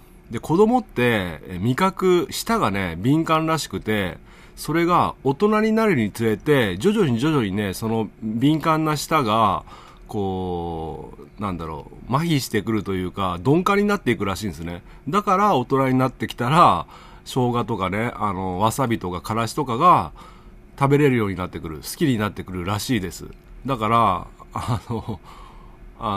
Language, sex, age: Japanese, male, 40-59